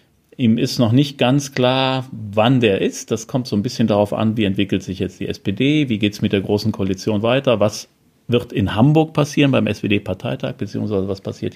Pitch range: 110-140 Hz